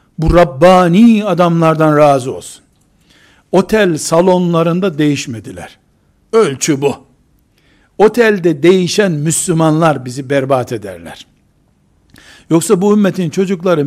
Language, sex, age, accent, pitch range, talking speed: Turkish, male, 60-79, native, 130-185 Hz, 85 wpm